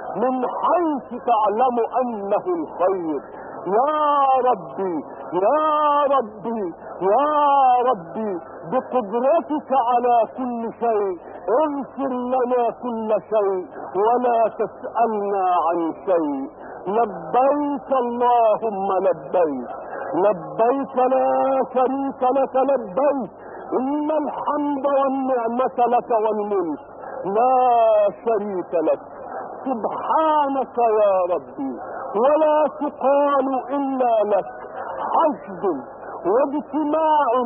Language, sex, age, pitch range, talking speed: Arabic, male, 50-69, 225-290 Hz, 75 wpm